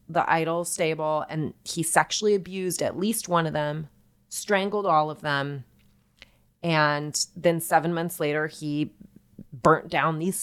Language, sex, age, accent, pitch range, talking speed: English, female, 30-49, American, 150-175 Hz, 145 wpm